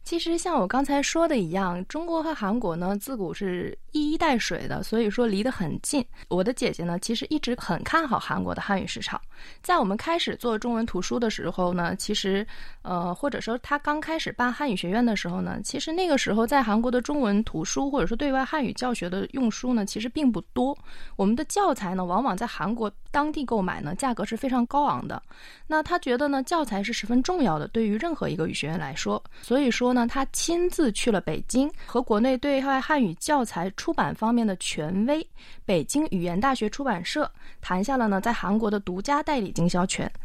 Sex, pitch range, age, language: female, 195-280 Hz, 20-39, Chinese